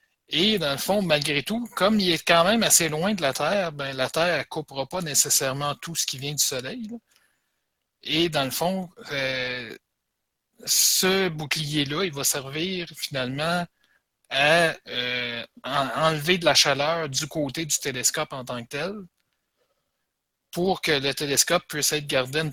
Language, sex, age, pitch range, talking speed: French, male, 60-79, 135-170 Hz, 170 wpm